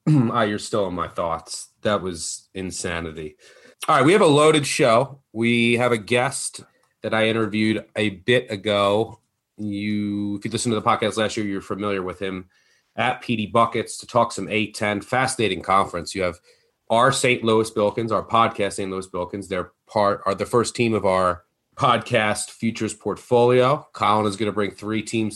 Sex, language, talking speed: male, English, 185 wpm